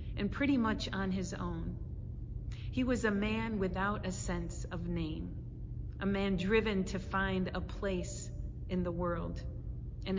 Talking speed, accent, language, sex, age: 155 wpm, American, English, female, 40-59